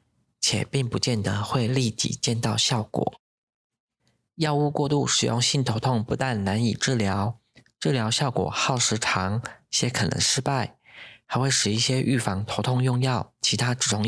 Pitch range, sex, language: 110-130 Hz, male, Chinese